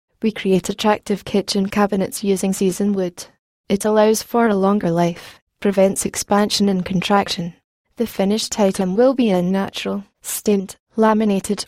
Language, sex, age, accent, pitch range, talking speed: English, female, 10-29, British, 190-215 Hz, 140 wpm